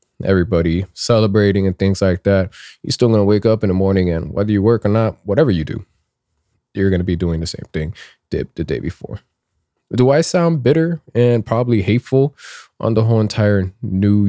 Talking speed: 200 wpm